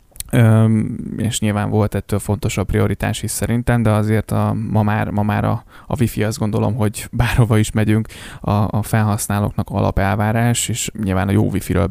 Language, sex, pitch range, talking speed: Hungarian, male, 100-115 Hz, 170 wpm